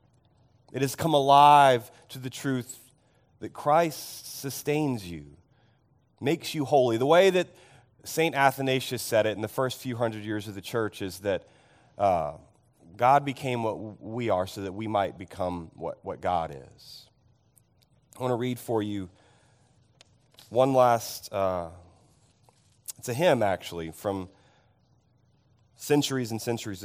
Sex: male